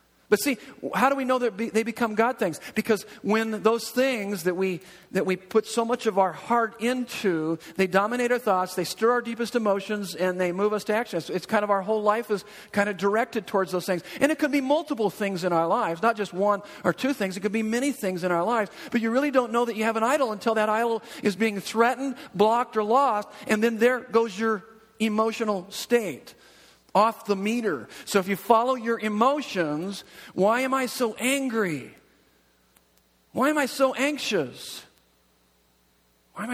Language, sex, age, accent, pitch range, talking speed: English, male, 50-69, American, 155-230 Hz, 200 wpm